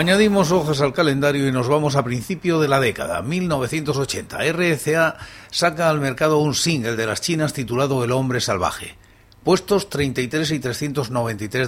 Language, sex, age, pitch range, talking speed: Spanish, male, 60-79, 115-150 Hz, 155 wpm